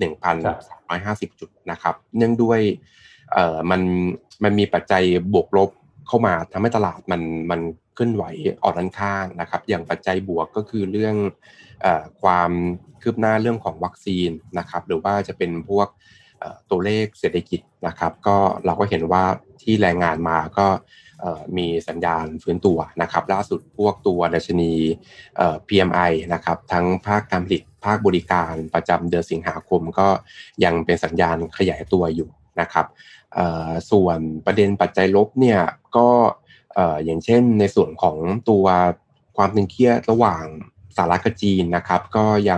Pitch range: 85-105 Hz